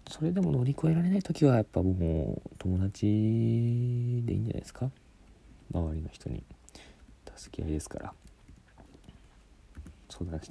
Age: 40-59